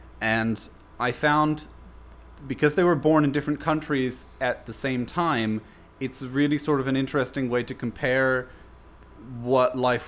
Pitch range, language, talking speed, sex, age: 115-145 Hz, English, 150 wpm, male, 30-49